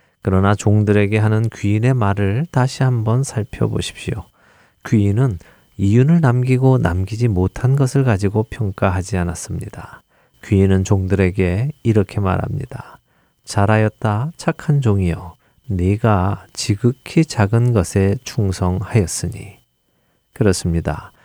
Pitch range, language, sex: 95-125 Hz, Korean, male